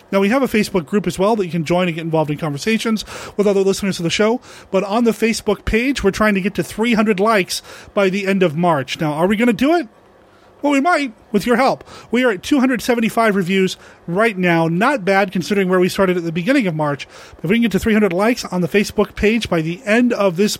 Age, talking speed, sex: 30-49, 255 wpm, male